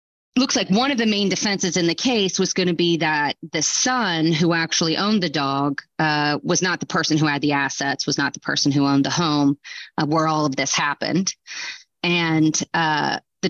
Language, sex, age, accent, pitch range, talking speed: English, female, 30-49, American, 150-180 Hz, 215 wpm